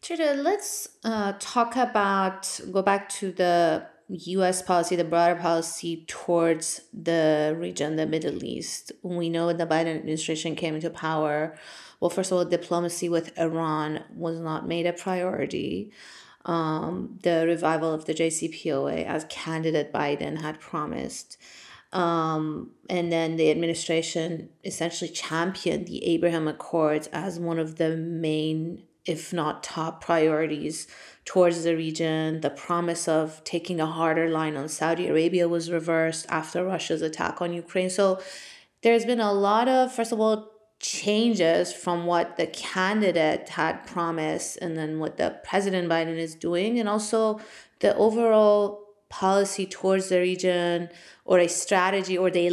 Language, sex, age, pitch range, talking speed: English, female, 30-49, 160-190 Hz, 145 wpm